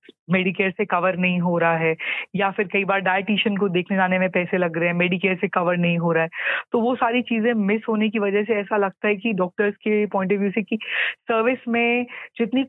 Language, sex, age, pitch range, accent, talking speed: Hindi, female, 30-49, 190-225 Hz, native, 235 wpm